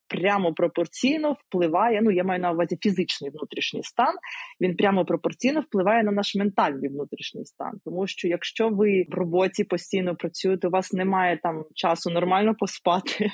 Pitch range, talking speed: 185-235 Hz, 155 wpm